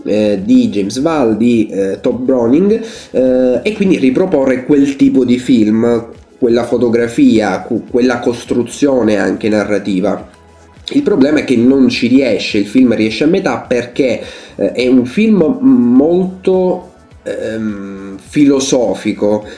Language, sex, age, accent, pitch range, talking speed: Italian, male, 30-49, native, 110-150 Hz, 125 wpm